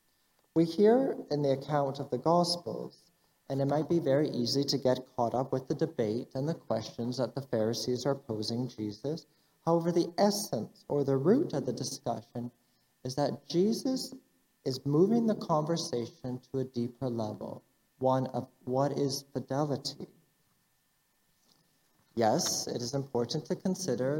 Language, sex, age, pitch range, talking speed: English, male, 40-59, 125-165 Hz, 150 wpm